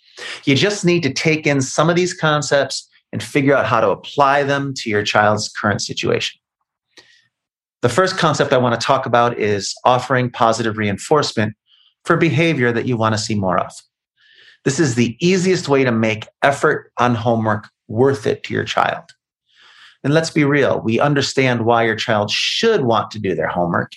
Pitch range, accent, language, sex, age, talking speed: 115-160 Hz, American, English, male, 30-49, 185 wpm